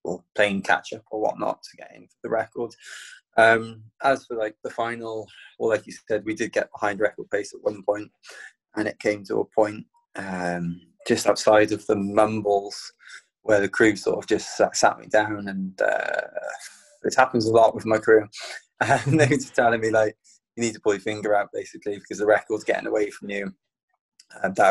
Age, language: 20-39, English